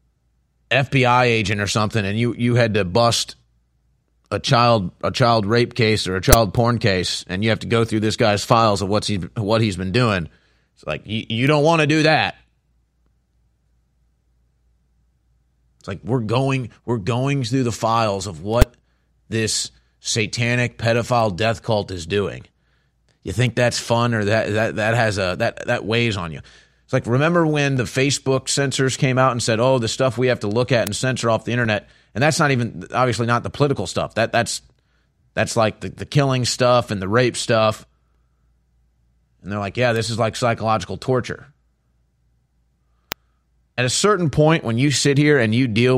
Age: 30-49